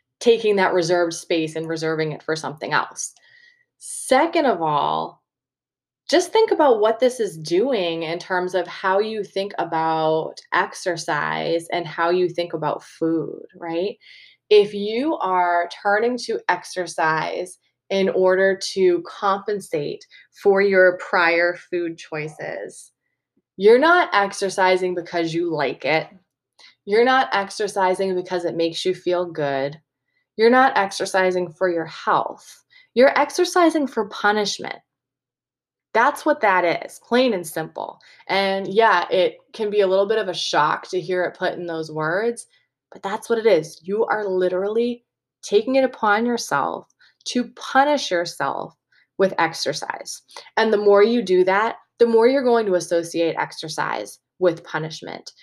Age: 20-39